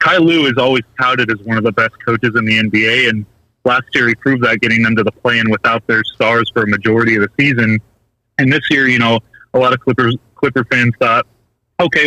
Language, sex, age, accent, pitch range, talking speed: English, male, 30-49, American, 115-150 Hz, 230 wpm